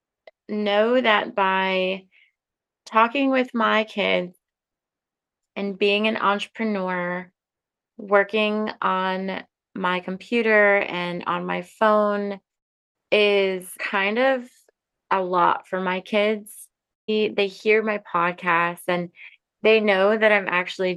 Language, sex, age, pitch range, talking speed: English, female, 20-39, 175-210 Hz, 110 wpm